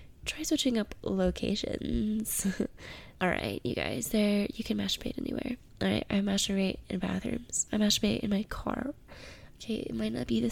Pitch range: 200-240 Hz